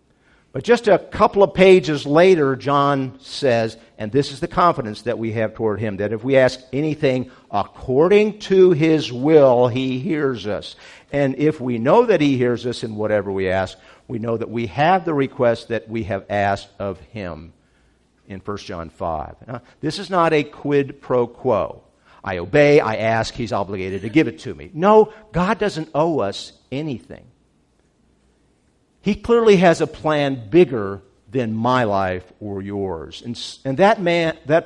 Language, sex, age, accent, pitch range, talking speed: English, male, 50-69, American, 115-165 Hz, 170 wpm